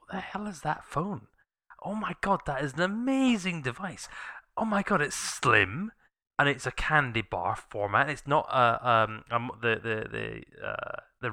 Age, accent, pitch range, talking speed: 10-29, British, 110-145 Hz, 185 wpm